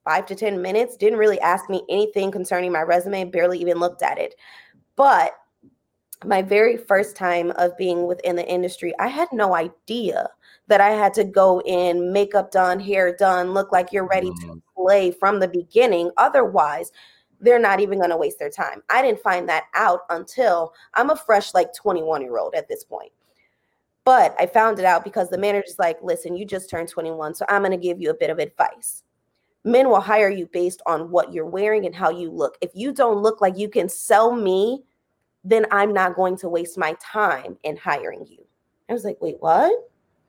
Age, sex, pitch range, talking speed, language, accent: 20-39, female, 180-220 Hz, 205 wpm, English, American